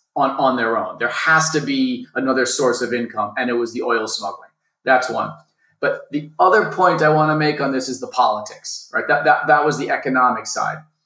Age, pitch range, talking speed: 30-49, 125-160 Hz, 220 wpm